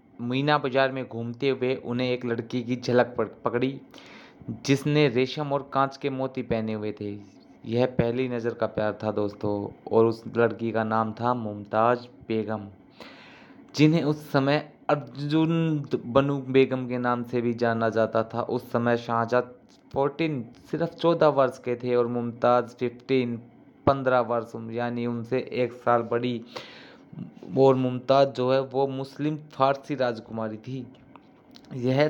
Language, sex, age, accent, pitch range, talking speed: Hindi, male, 20-39, native, 120-135 Hz, 145 wpm